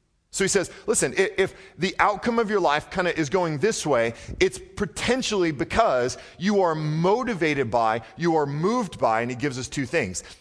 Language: English